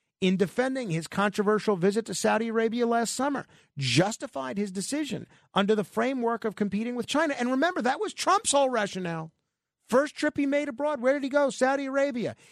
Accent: American